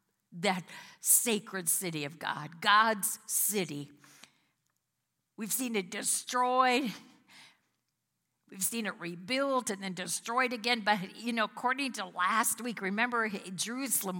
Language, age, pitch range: English, 50-69, 200-245 Hz